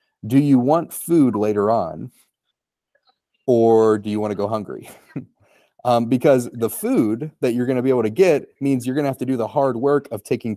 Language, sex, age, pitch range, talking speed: English, male, 30-49, 110-135 Hz, 210 wpm